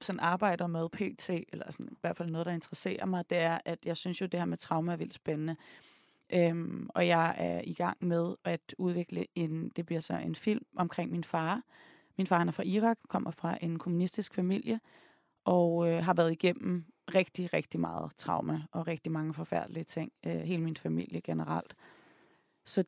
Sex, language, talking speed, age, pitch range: female, Danish, 200 wpm, 30-49, 160-185 Hz